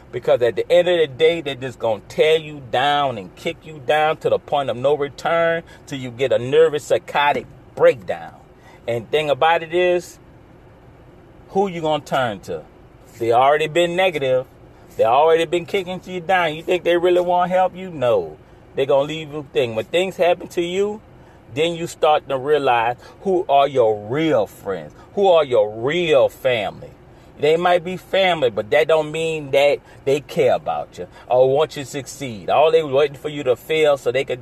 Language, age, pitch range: English, 40-59, 135-175 Hz